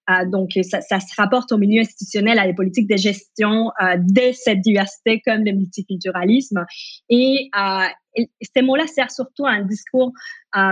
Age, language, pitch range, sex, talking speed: 20-39, French, 200-250 Hz, female, 175 wpm